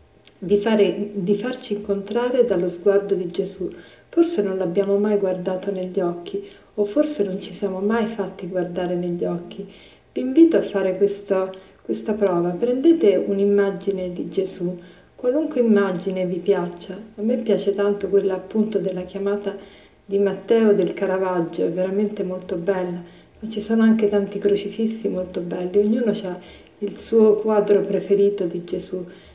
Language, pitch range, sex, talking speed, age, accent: Italian, 185-215 Hz, female, 150 wpm, 40-59, native